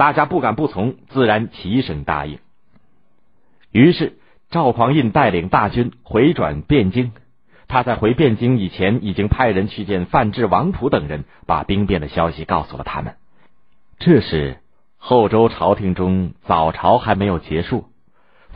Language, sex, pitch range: Chinese, male, 85-125 Hz